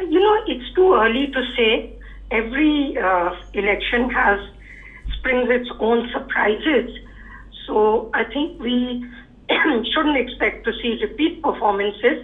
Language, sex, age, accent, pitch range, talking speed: English, female, 50-69, Indian, 215-275 Hz, 125 wpm